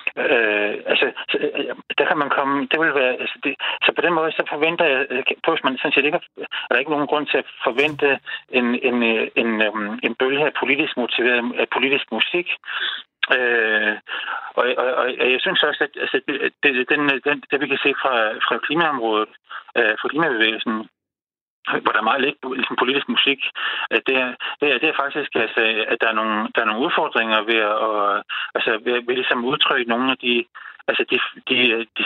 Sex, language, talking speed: male, Danish, 180 wpm